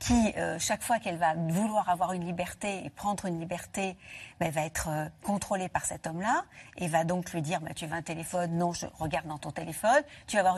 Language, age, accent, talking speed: French, 50-69, French, 235 wpm